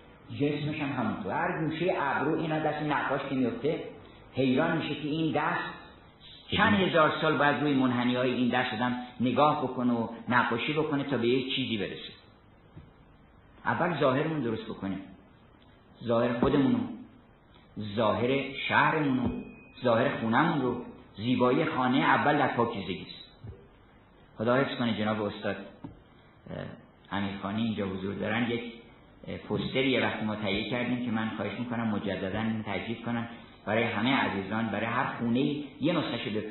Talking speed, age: 135 wpm, 50-69